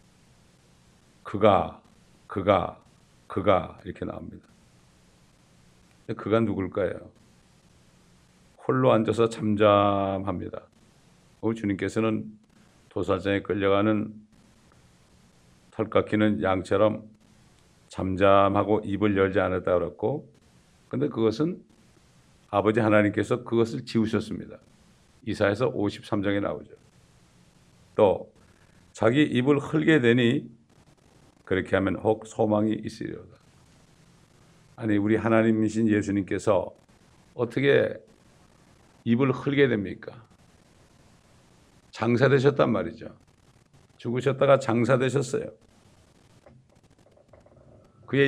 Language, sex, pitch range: Korean, male, 100-120 Hz